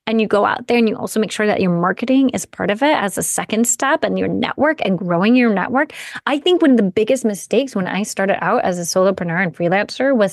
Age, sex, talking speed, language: 20-39, female, 260 wpm, English